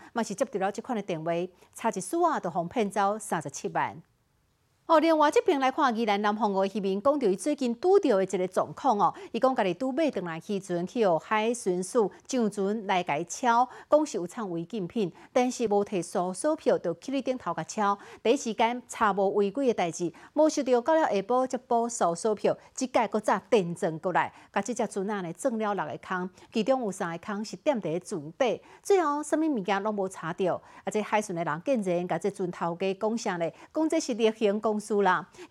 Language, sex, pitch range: Chinese, female, 185-250 Hz